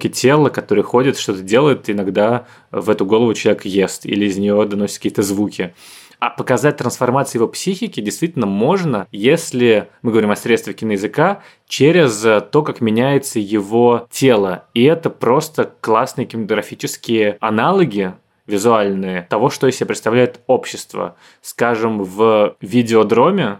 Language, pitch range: Russian, 100-120 Hz